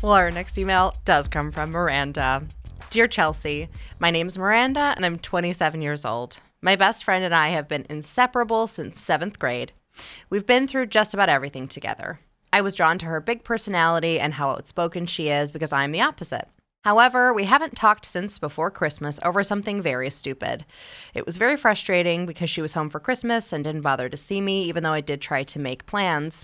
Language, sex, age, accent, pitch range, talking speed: English, female, 20-39, American, 145-200 Hz, 200 wpm